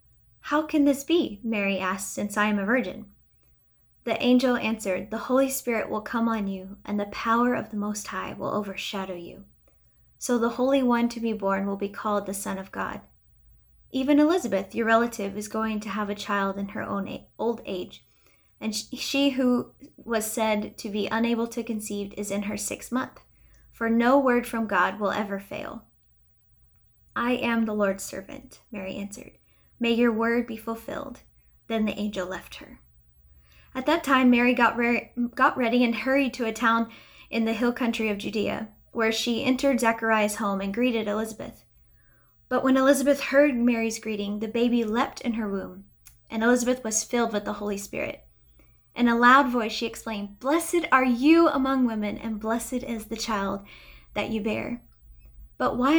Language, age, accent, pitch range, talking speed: English, 10-29, American, 205-250 Hz, 180 wpm